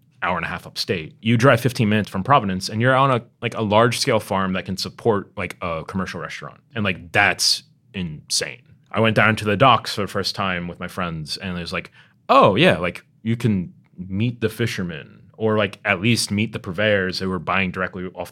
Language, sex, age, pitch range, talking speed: English, male, 20-39, 90-110 Hz, 225 wpm